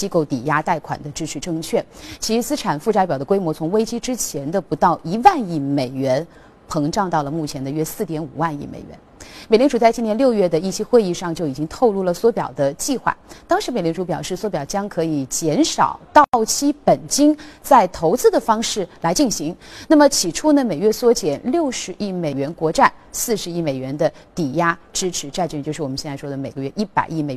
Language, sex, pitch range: Chinese, female, 155-245 Hz